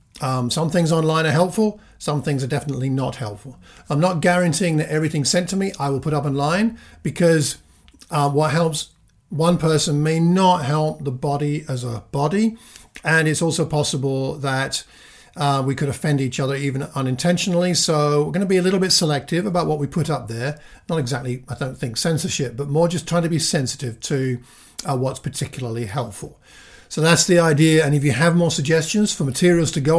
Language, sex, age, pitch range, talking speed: English, male, 50-69, 135-170 Hz, 200 wpm